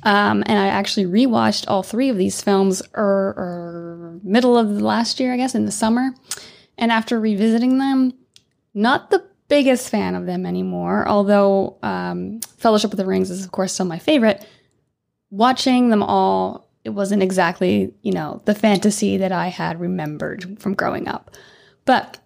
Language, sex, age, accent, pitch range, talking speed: English, female, 20-39, American, 185-225 Hz, 175 wpm